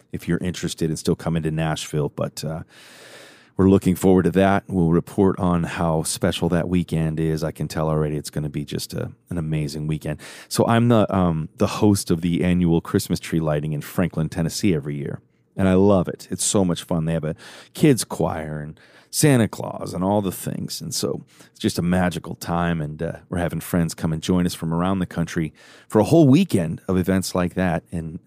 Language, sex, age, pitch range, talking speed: English, male, 30-49, 80-95 Hz, 215 wpm